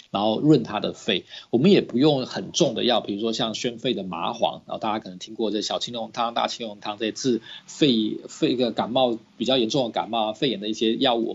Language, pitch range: Chinese, 110-150 Hz